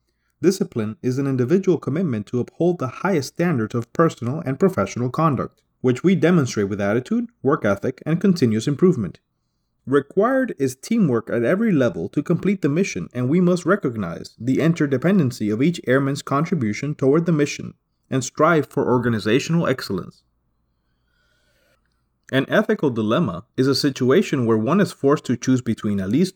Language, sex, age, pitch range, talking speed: English, male, 30-49, 110-165 Hz, 155 wpm